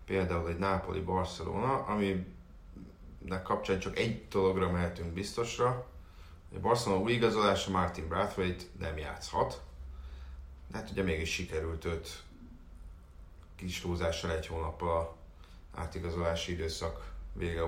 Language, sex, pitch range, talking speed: Hungarian, male, 80-95 Hz, 105 wpm